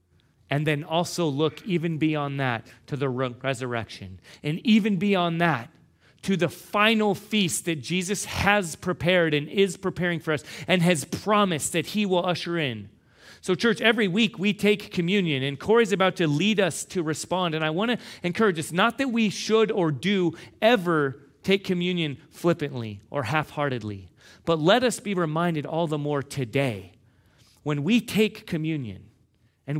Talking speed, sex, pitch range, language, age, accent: 165 wpm, male, 125-175 Hz, English, 40-59, American